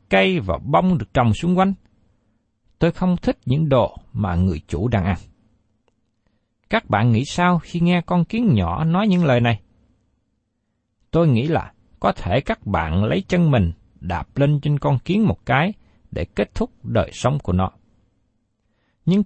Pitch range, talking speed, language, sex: 105-180 Hz, 170 wpm, Vietnamese, male